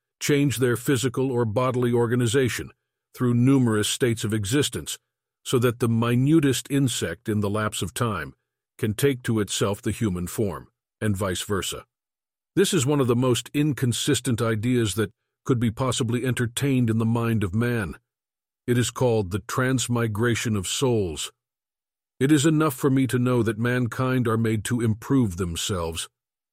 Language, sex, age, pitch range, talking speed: English, male, 50-69, 115-135 Hz, 160 wpm